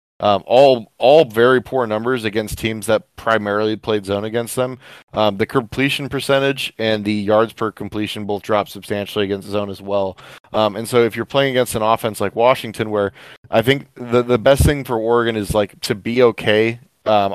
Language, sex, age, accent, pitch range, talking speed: English, male, 20-39, American, 105-115 Hz, 195 wpm